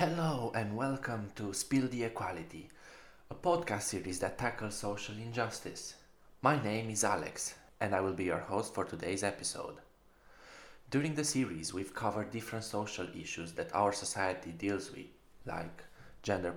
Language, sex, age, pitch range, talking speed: English, male, 20-39, 90-110 Hz, 150 wpm